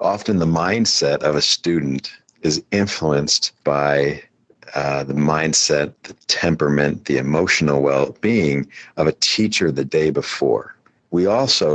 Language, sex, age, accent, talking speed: English, male, 50-69, American, 130 wpm